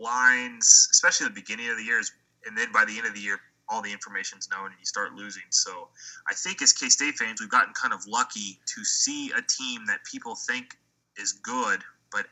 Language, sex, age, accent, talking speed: English, male, 20-39, American, 225 wpm